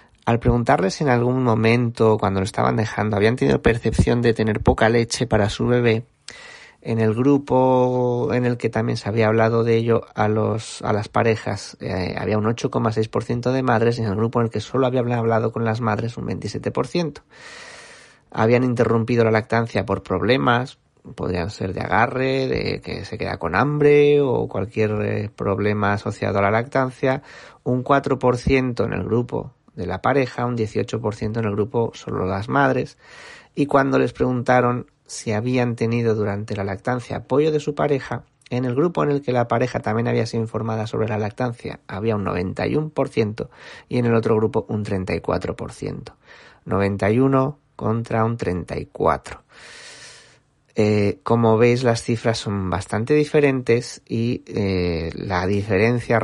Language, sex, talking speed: Spanish, male, 160 wpm